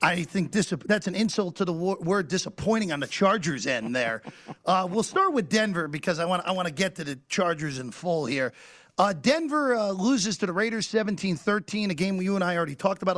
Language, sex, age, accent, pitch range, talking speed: English, male, 40-59, American, 165-210 Hz, 225 wpm